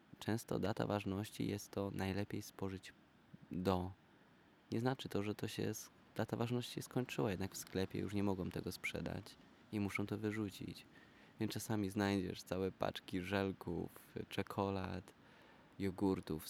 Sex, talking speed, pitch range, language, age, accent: male, 135 wpm, 90-105 Hz, Polish, 20-39, native